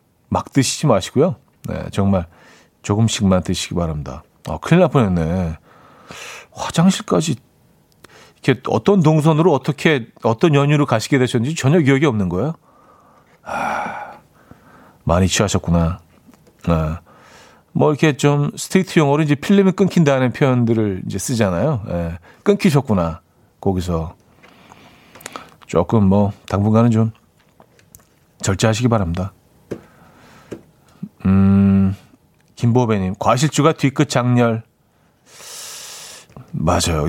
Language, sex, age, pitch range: Korean, male, 40-59, 95-145 Hz